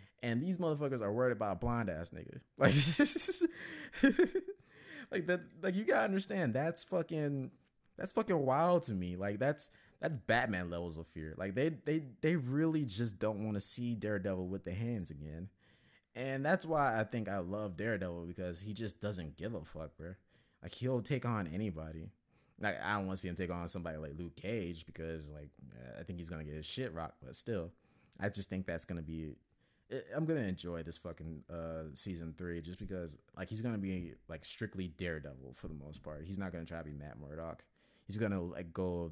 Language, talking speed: English, 200 wpm